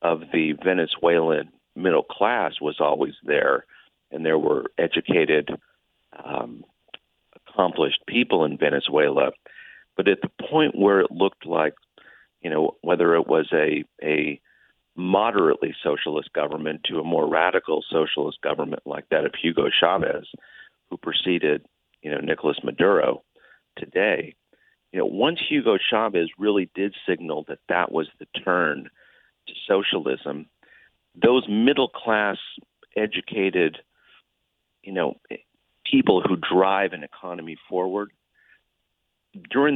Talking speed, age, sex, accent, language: 120 wpm, 40-59, male, American, English